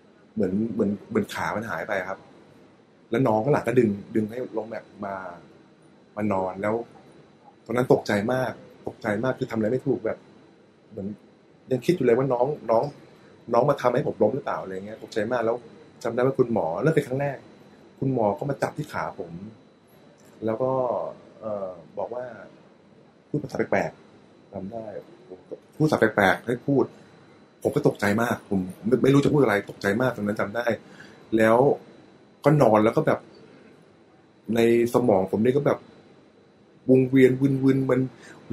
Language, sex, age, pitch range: Thai, male, 20-39, 110-135 Hz